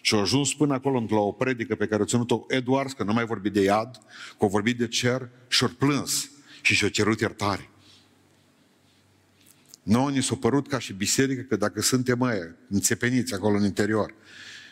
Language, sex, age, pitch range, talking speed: Romanian, male, 50-69, 110-135 Hz, 175 wpm